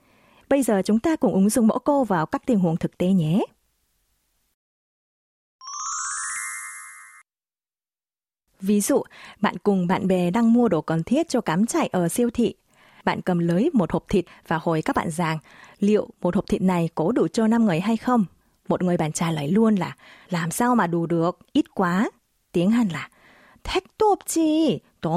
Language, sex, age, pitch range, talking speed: Vietnamese, female, 20-39, 175-255 Hz, 185 wpm